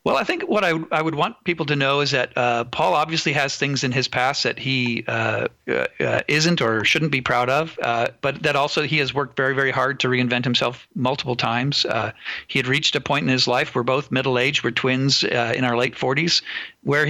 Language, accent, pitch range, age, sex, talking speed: English, American, 125-145 Hz, 50-69, male, 235 wpm